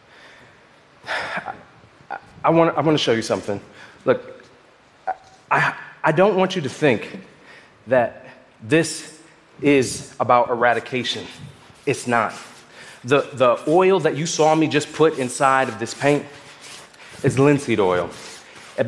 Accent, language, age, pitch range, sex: American, Japanese, 30-49, 120-155 Hz, male